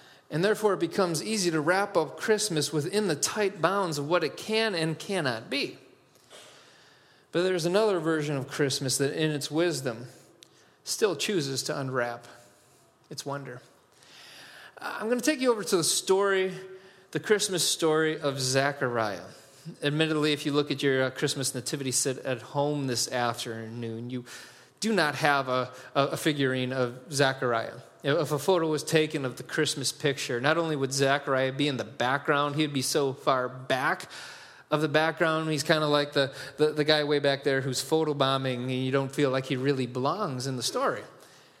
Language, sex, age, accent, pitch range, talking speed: English, male, 30-49, American, 130-160 Hz, 175 wpm